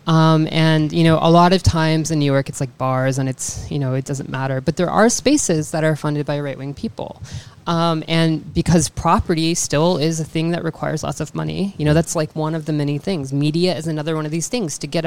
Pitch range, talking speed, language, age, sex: 150-170 Hz, 245 wpm, English, 20-39, female